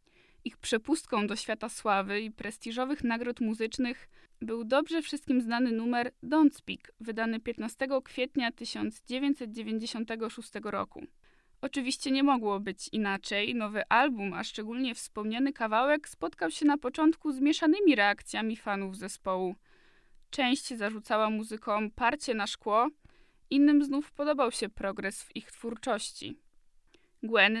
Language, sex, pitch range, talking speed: Polish, female, 220-275 Hz, 120 wpm